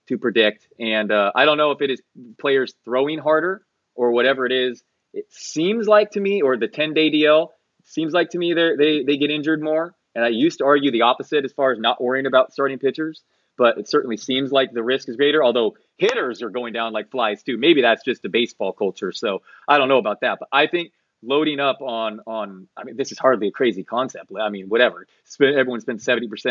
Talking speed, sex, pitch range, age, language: 230 wpm, male, 120-160 Hz, 30-49, English